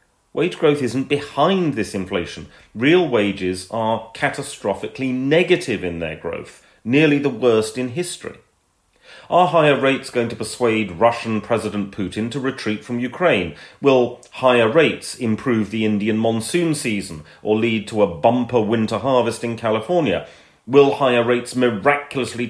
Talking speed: 140 wpm